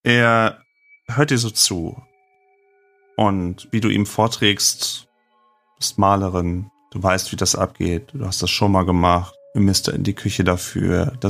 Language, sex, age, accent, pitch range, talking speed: German, male, 30-49, German, 90-125 Hz, 160 wpm